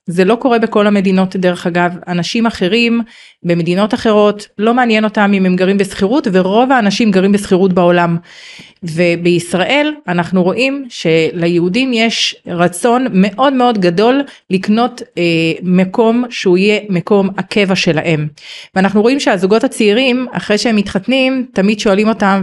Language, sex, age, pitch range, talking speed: Hebrew, female, 30-49, 175-230 Hz, 135 wpm